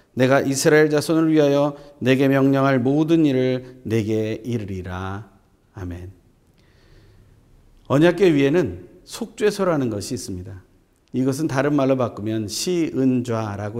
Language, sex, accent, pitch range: Korean, male, native, 100-140 Hz